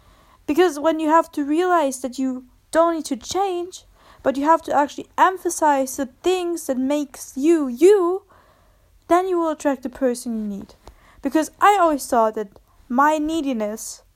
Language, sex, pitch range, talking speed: English, female, 230-300 Hz, 165 wpm